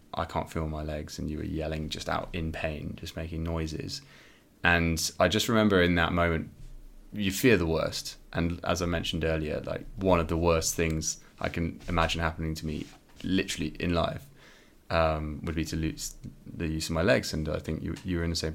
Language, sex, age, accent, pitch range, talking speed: English, male, 20-39, British, 80-95 Hz, 215 wpm